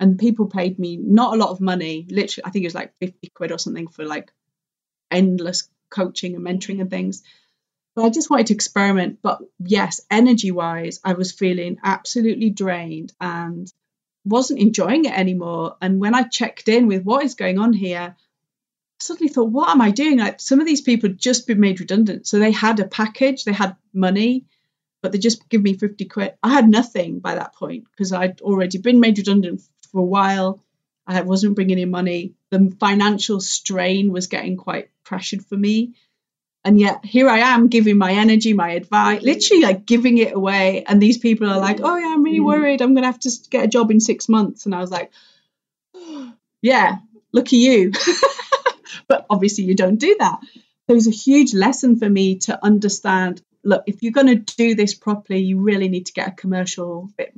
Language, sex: English, female